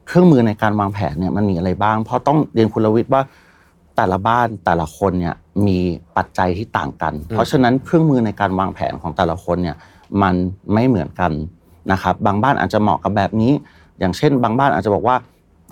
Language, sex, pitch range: Thai, male, 90-120 Hz